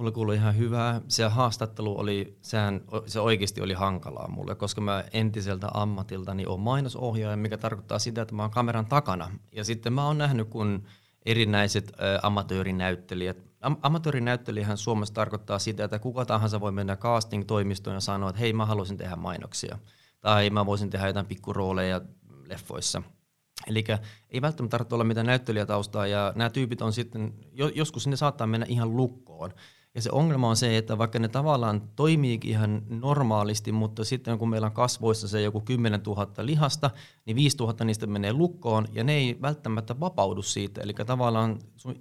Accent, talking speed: native, 170 wpm